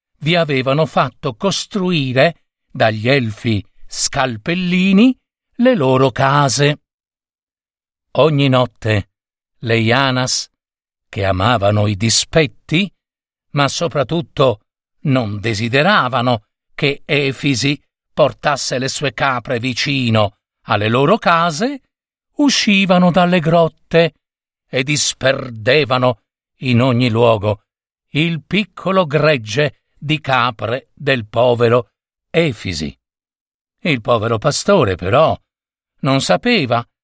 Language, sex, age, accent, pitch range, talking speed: Italian, male, 50-69, native, 120-155 Hz, 85 wpm